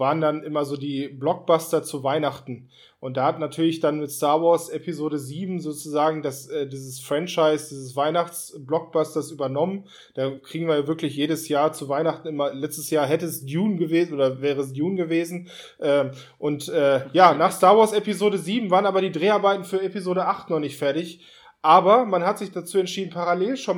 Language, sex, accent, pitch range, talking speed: German, male, German, 145-180 Hz, 185 wpm